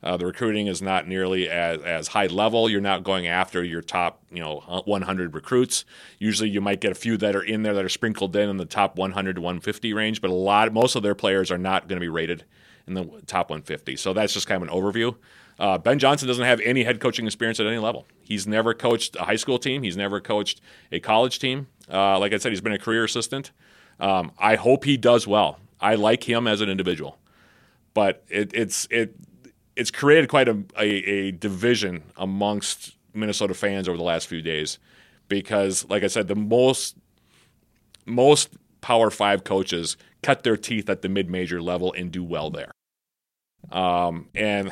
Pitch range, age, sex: 95-110 Hz, 30-49, male